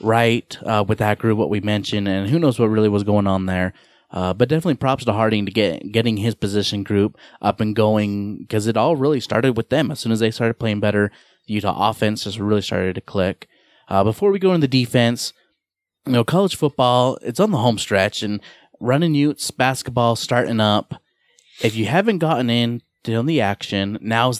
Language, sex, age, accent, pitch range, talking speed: English, male, 30-49, American, 105-130 Hz, 210 wpm